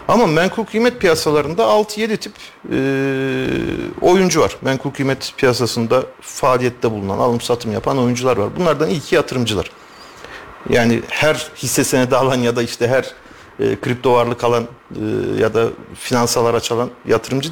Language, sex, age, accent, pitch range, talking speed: Turkish, male, 50-69, native, 120-170 Hz, 135 wpm